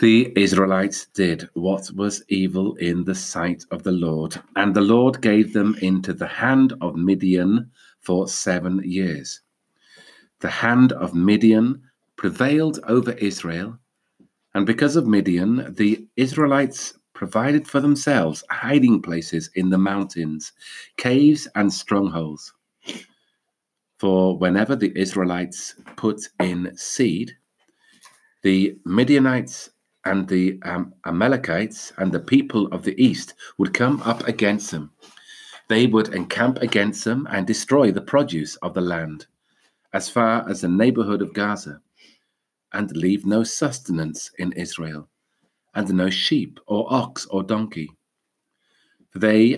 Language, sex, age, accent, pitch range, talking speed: English, male, 50-69, British, 95-115 Hz, 130 wpm